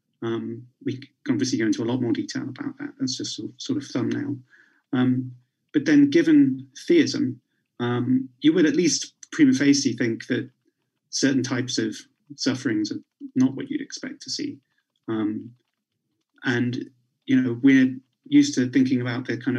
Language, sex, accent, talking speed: English, male, British, 165 wpm